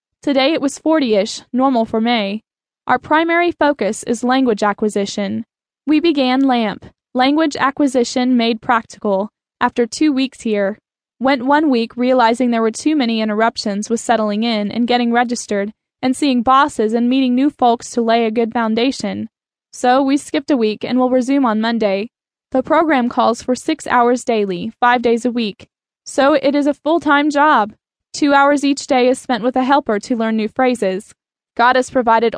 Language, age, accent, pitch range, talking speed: English, 10-29, American, 225-270 Hz, 175 wpm